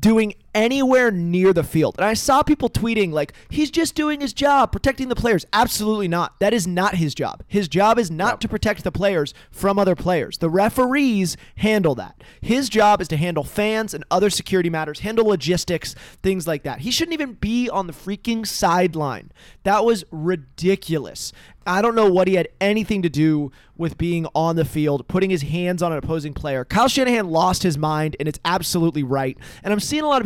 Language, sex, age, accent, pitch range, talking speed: English, male, 20-39, American, 160-215 Hz, 205 wpm